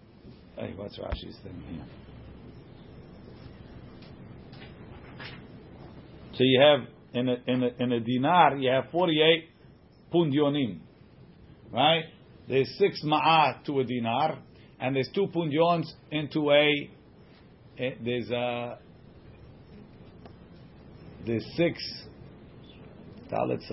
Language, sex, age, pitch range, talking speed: English, male, 50-69, 125-155 Hz, 80 wpm